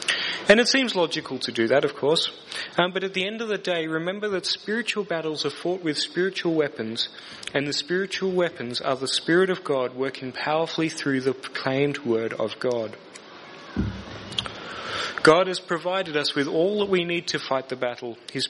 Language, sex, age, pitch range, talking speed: English, male, 30-49, 135-180 Hz, 185 wpm